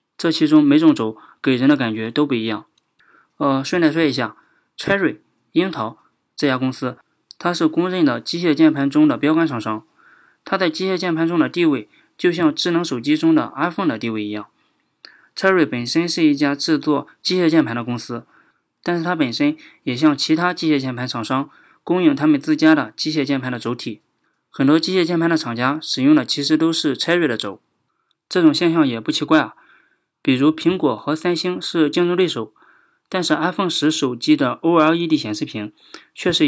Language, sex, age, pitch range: Chinese, male, 20-39, 130-175 Hz